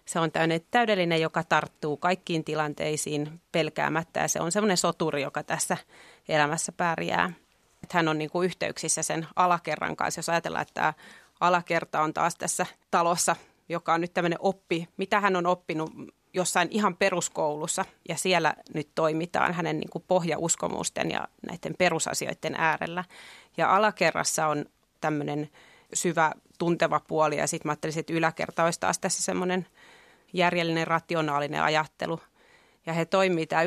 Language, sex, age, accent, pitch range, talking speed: Finnish, female, 30-49, native, 160-180 Hz, 145 wpm